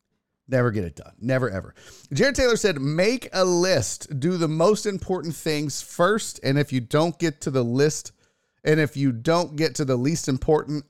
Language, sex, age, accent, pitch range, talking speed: English, male, 40-59, American, 110-150 Hz, 195 wpm